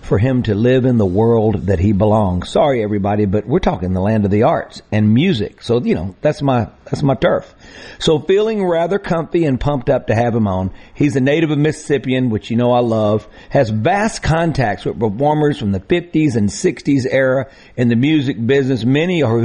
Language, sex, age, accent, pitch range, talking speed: English, male, 50-69, American, 115-155 Hz, 210 wpm